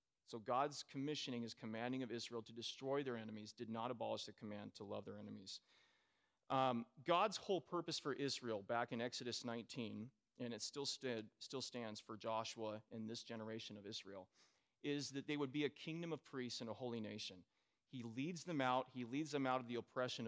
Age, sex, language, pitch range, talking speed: 30-49, male, English, 120-150 Hz, 200 wpm